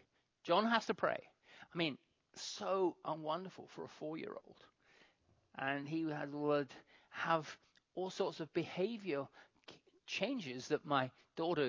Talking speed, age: 120 wpm, 40-59